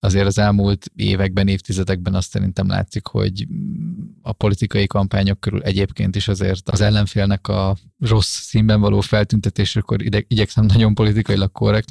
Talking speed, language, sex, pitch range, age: 145 wpm, Hungarian, male, 100-110 Hz, 20-39